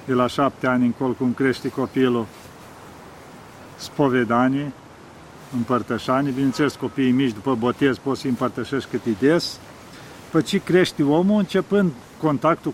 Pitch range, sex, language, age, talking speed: 135-175 Hz, male, Romanian, 50-69, 120 wpm